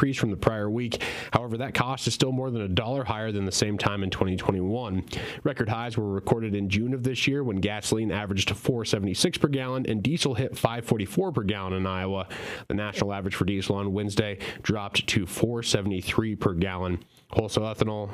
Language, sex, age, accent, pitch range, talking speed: English, male, 30-49, American, 100-125 Hz, 190 wpm